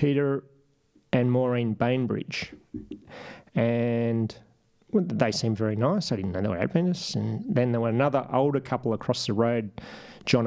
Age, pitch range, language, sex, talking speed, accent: 30-49, 120-150 Hz, English, male, 150 wpm, Australian